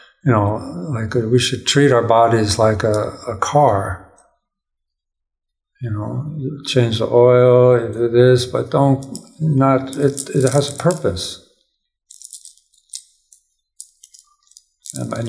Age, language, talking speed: 60-79, English, 120 wpm